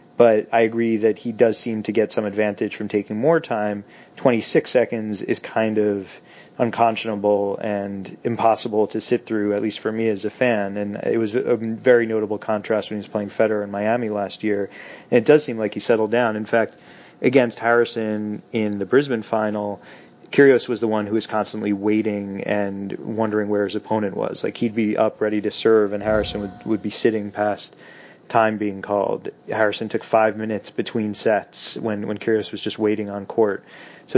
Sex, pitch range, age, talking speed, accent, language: male, 105-115 Hz, 30-49, 195 wpm, American, English